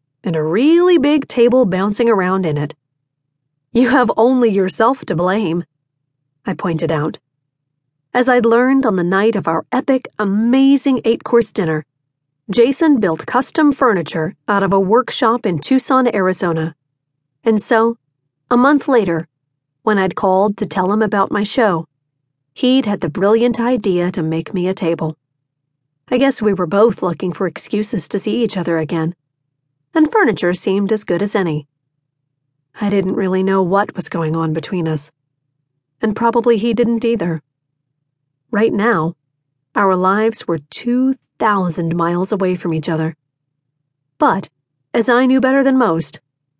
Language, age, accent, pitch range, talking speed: English, 40-59, American, 145-215 Hz, 150 wpm